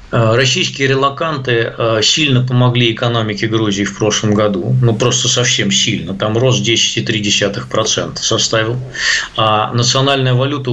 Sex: male